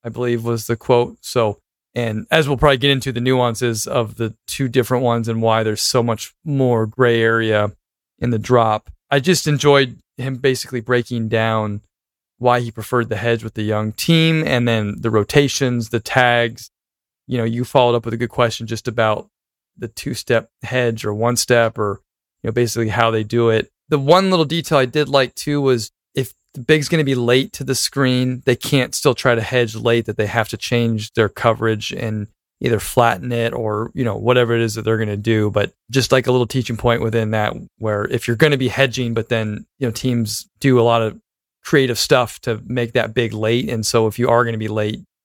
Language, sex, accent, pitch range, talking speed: English, male, American, 110-125 Hz, 220 wpm